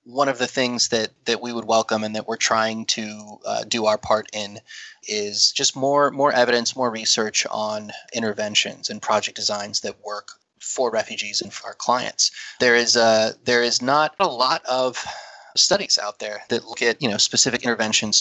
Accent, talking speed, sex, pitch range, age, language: American, 190 wpm, male, 110-125 Hz, 30-49, English